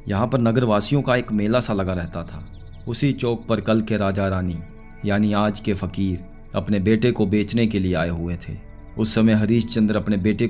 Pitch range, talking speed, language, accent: 100-125 Hz, 205 wpm, Hindi, native